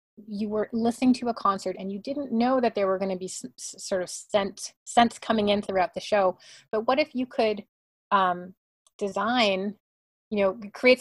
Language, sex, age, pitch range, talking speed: English, female, 30-49, 185-230 Hz, 185 wpm